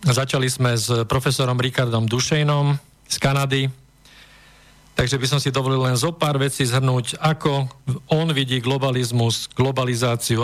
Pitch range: 130-150 Hz